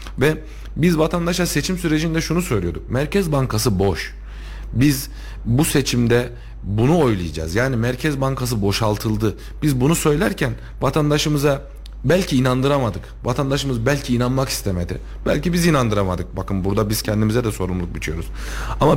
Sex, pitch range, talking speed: male, 100-145 Hz, 125 wpm